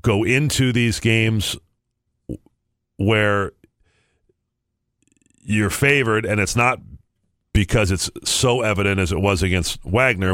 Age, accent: 40-59, American